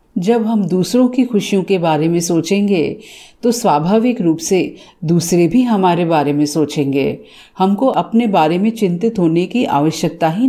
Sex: female